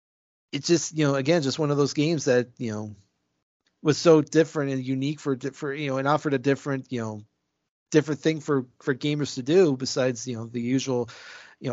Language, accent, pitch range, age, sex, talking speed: English, American, 120-145 Hz, 30-49, male, 210 wpm